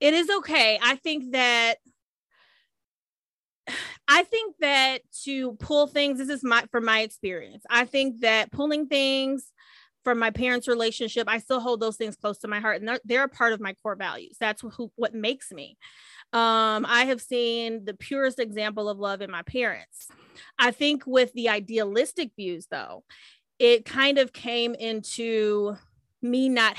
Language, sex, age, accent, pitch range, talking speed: English, female, 30-49, American, 215-265 Hz, 170 wpm